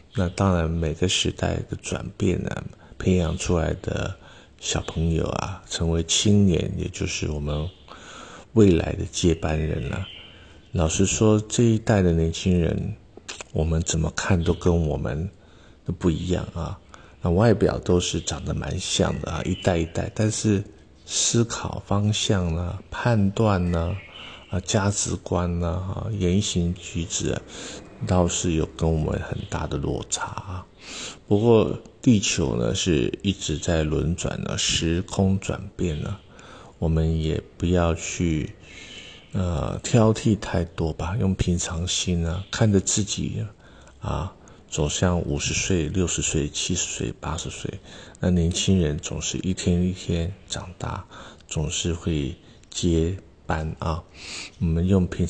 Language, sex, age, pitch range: Chinese, male, 50-69, 80-100 Hz